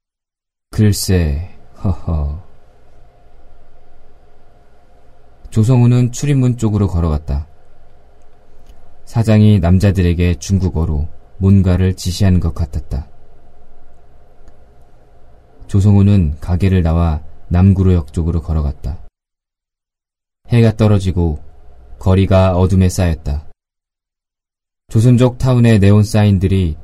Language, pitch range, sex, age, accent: Korean, 80-100 Hz, male, 20-39, native